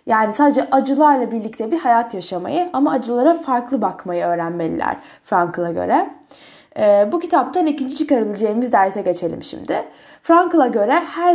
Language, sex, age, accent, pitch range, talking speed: Turkish, female, 10-29, native, 230-295 Hz, 125 wpm